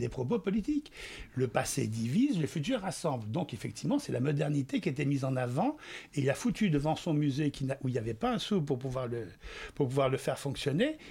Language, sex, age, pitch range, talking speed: French, male, 60-79, 135-190 Hz, 230 wpm